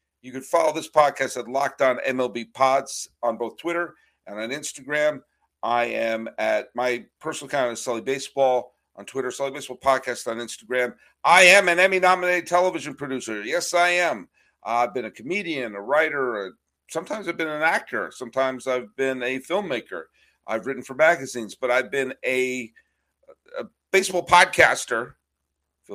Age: 50-69